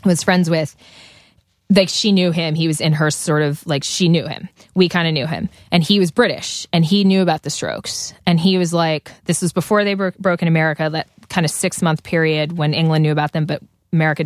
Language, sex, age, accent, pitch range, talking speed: English, female, 20-39, American, 160-200 Hz, 230 wpm